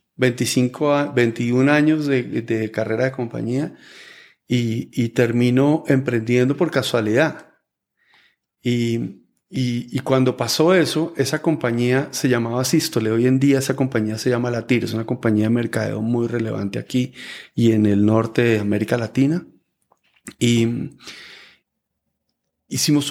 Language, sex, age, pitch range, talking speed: English, male, 30-49, 120-145 Hz, 130 wpm